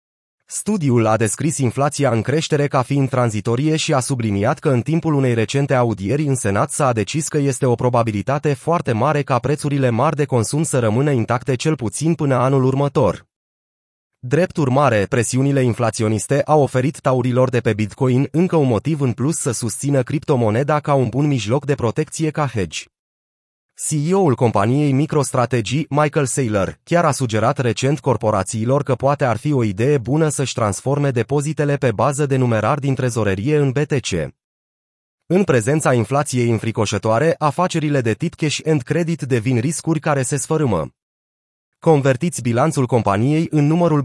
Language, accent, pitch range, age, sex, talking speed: Romanian, native, 115-150 Hz, 30-49, male, 155 wpm